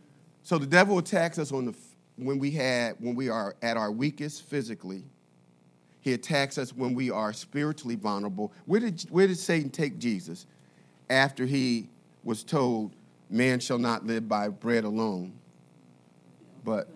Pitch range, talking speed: 115-175 Hz, 160 wpm